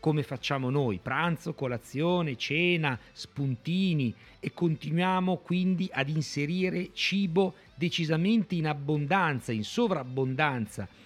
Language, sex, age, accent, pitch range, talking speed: Italian, male, 40-59, native, 120-180 Hz, 100 wpm